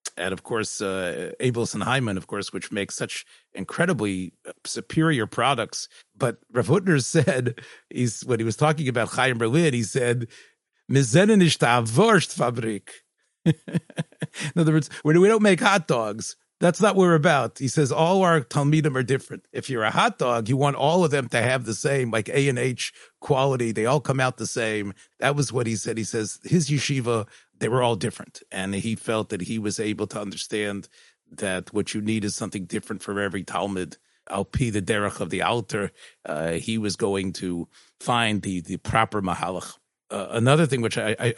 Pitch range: 105-140 Hz